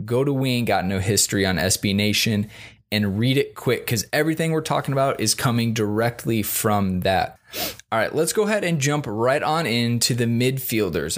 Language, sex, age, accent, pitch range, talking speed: English, male, 20-39, American, 100-125 Hz, 195 wpm